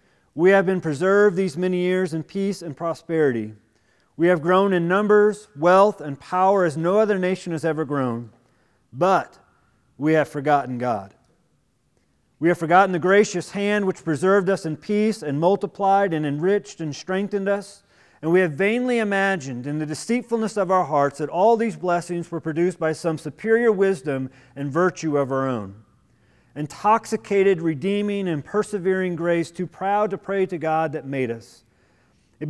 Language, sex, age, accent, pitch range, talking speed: English, male, 40-59, American, 155-200 Hz, 165 wpm